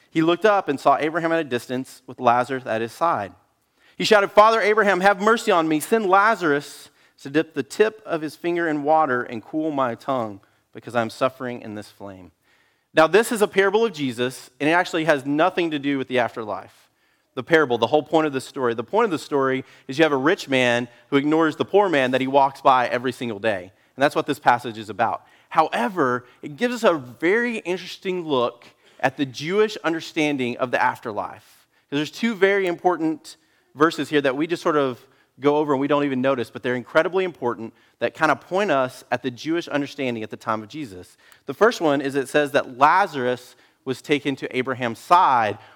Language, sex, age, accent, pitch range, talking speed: English, male, 30-49, American, 125-165 Hz, 210 wpm